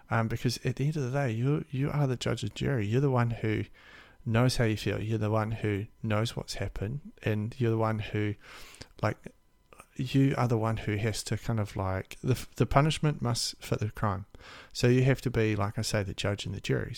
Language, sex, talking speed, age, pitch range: English, male, 235 wpm, 30-49, 105-125 Hz